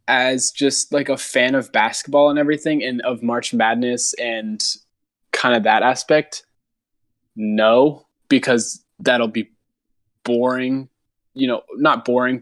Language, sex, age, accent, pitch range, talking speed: English, male, 20-39, American, 115-135 Hz, 130 wpm